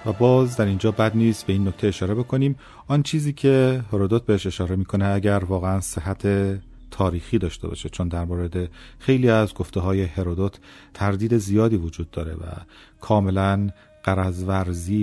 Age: 30-49